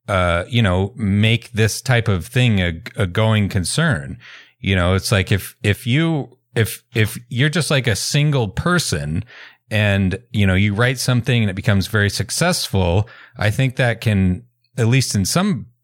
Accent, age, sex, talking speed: American, 30-49, male, 175 wpm